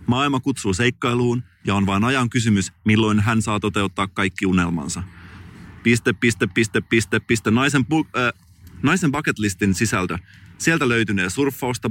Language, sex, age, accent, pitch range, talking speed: Finnish, male, 30-49, native, 95-120 Hz, 130 wpm